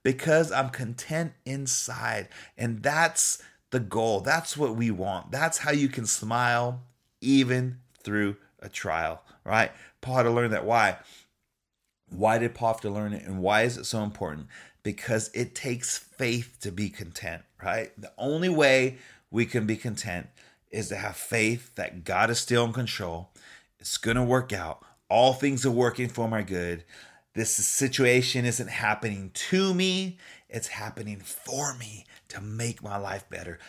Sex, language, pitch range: male, English, 110-135 Hz